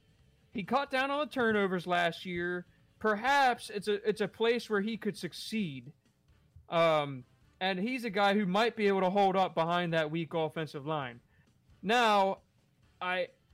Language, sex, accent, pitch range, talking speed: English, male, American, 160-200 Hz, 165 wpm